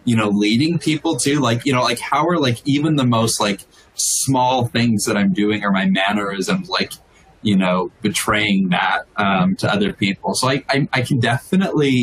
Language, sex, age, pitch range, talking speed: English, male, 20-39, 100-125 Hz, 195 wpm